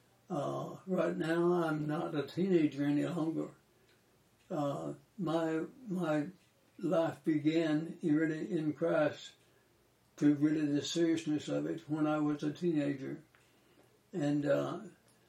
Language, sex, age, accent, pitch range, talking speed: English, male, 60-79, American, 145-170 Hz, 110 wpm